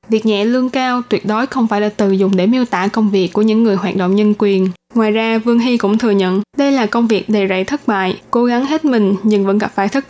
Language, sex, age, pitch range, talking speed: Vietnamese, female, 20-39, 200-245 Hz, 280 wpm